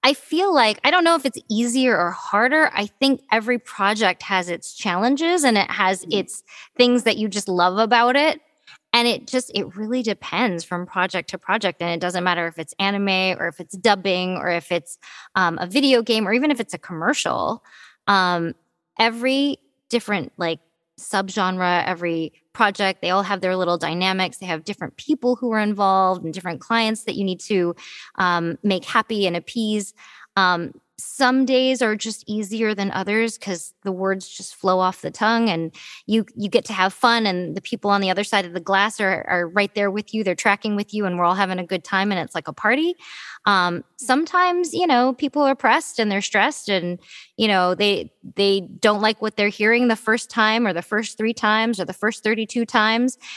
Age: 20-39